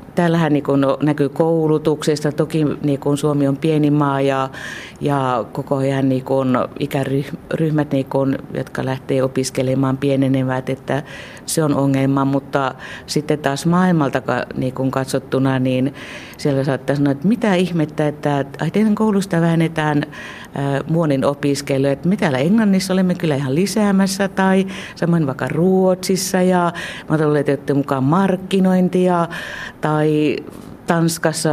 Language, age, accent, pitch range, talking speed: Finnish, 50-69, native, 135-155 Hz, 120 wpm